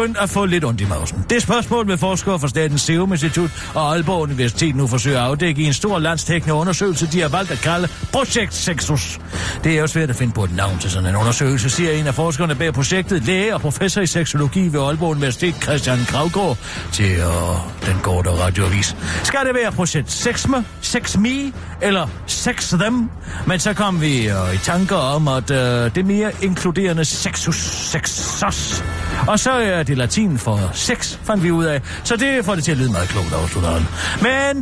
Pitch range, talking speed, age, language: 115-190 Hz, 195 wpm, 60-79, Danish